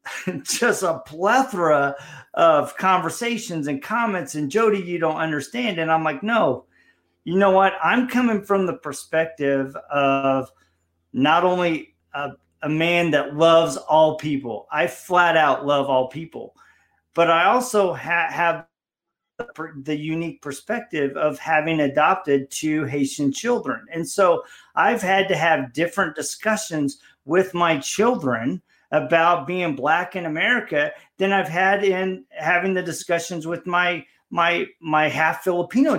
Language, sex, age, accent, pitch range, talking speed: English, male, 40-59, American, 155-190 Hz, 135 wpm